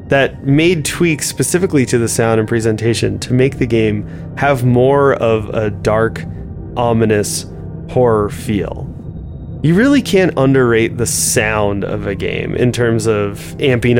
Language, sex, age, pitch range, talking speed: English, male, 20-39, 110-140 Hz, 145 wpm